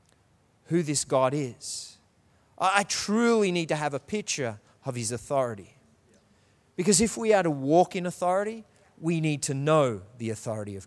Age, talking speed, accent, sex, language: 30-49, 160 wpm, Australian, male, English